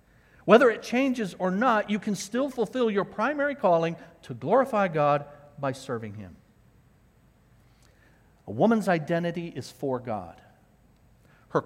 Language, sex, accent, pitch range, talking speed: English, male, American, 125-170 Hz, 130 wpm